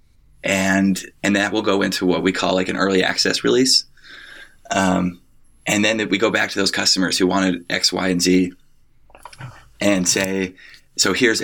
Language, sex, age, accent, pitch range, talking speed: English, male, 20-39, American, 95-105 Hz, 180 wpm